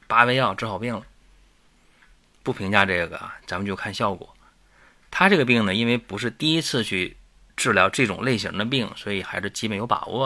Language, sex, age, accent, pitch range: Chinese, male, 30-49, native, 95-120 Hz